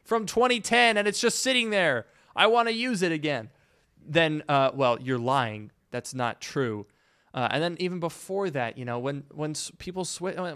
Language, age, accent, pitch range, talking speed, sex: English, 20-39, American, 125-180 Hz, 195 wpm, male